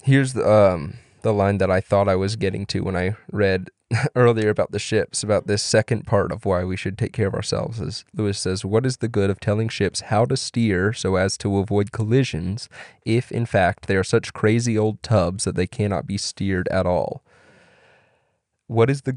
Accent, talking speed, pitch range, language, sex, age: American, 215 wpm, 95-115 Hz, English, male, 20-39